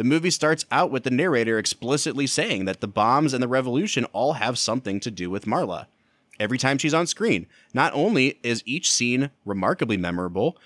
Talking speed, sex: 190 wpm, male